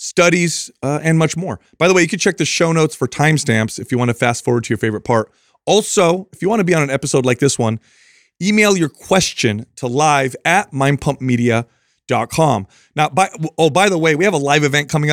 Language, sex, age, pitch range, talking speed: English, male, 30-49, 125-165 Hz, 225 wpm